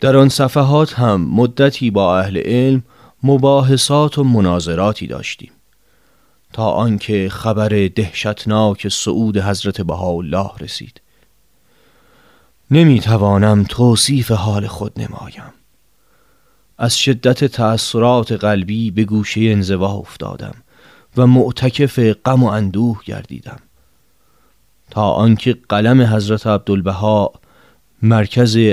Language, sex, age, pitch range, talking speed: Persian, male, 30-49, 100-125 Hz, 95 wpm